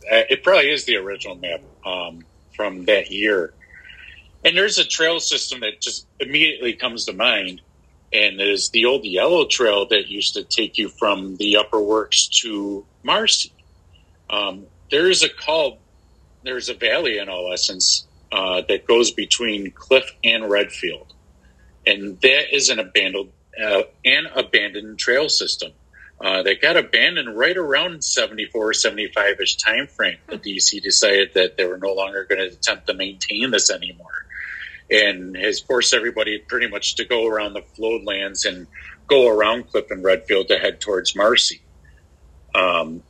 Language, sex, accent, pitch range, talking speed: English, male, American, 90-140 Hz, 155 wpm